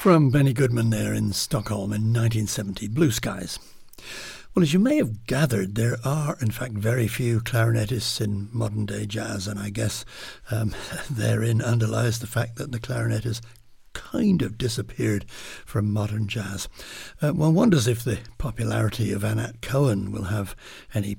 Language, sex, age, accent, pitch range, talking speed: English, male, 60-79, British, 105-125 Hz, 160 wpm